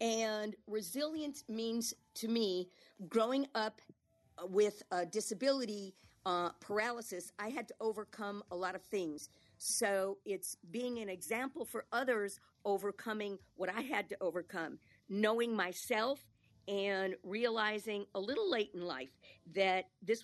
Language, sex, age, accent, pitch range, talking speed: English, female, 50-69, American, 185-225 Hz, 130 wpm